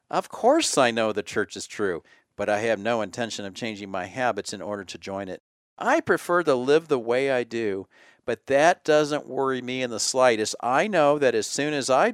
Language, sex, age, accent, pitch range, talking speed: English, male, 50-69, American, 105-135 Hz, 225 wpm